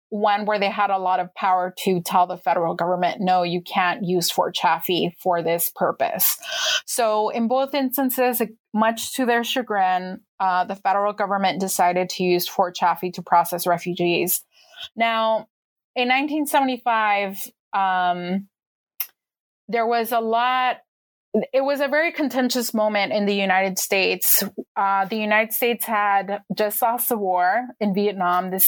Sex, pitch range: female, 185-230 Hz